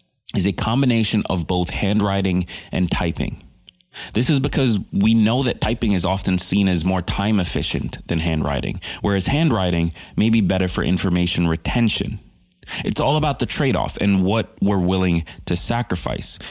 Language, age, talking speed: English, 30-49, 155 wpm